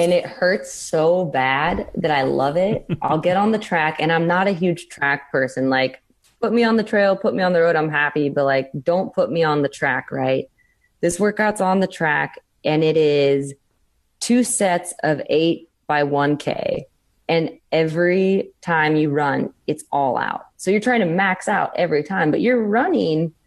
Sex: female